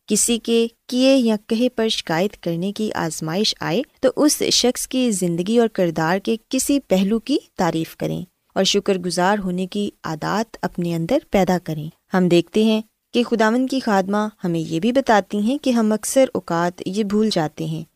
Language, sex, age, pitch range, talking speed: Urdu, female, 20-39, 180-235 Hz, 180 wpm